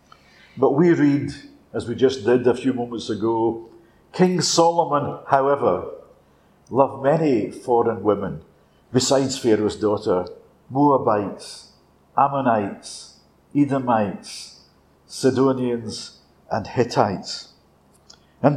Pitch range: 115-145 Hz